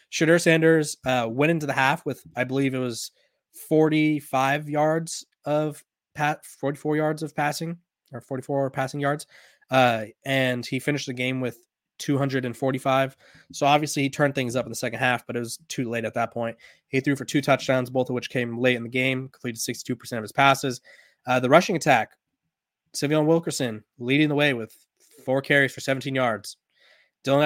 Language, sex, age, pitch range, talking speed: English, male, 20-39, 125-145 Hz, 180 wpm